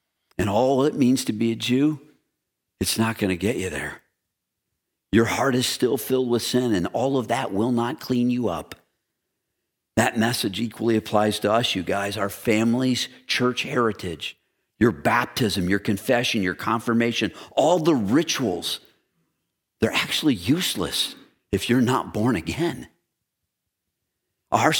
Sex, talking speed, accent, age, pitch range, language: male, 150 wpm, American, 50-69, 105-125 Hz, English